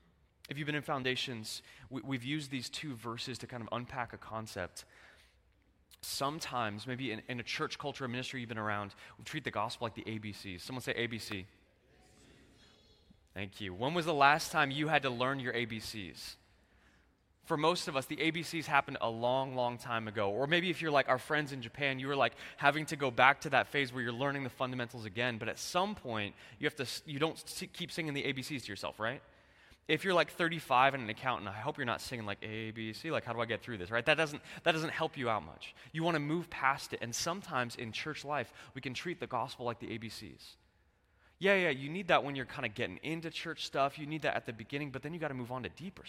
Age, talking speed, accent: 20-39, 235 wpm, American